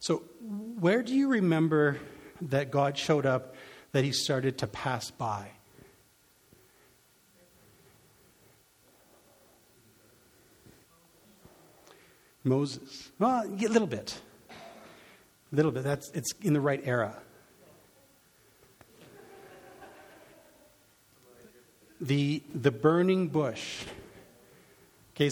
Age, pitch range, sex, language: 50-69, 135-185 Hz, male, English